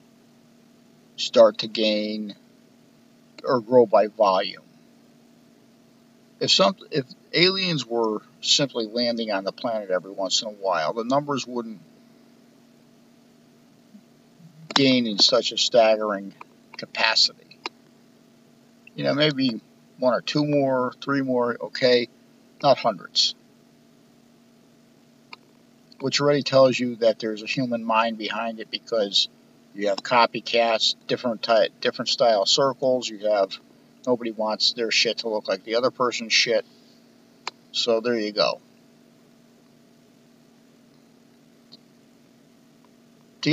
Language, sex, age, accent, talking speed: English, male, 50-69, American, 110 wpm